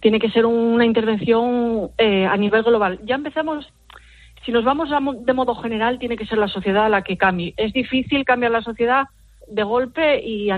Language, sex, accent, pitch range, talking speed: Spanish, female, Spanish, 195-240 Hz, 195 wpm